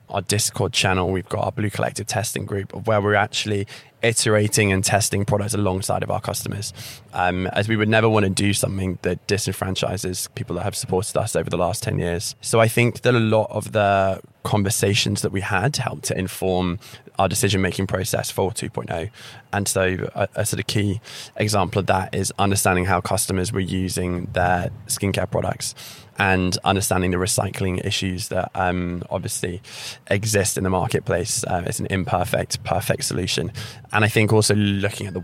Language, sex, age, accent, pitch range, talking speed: English, male, 20-39, British, 95-110 Hz, 180 wpm